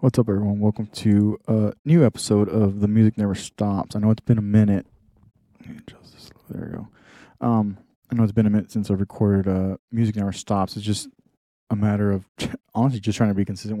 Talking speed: 205 wpm